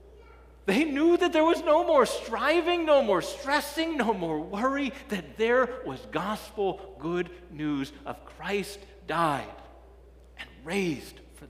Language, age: English, 40-59